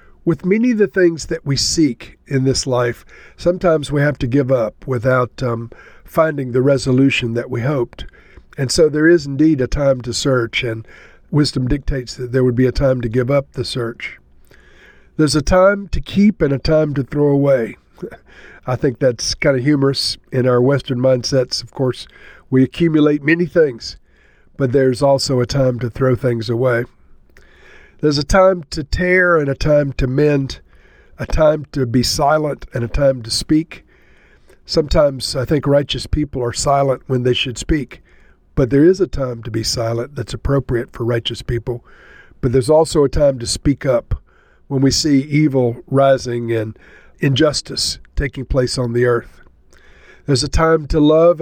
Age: 50-69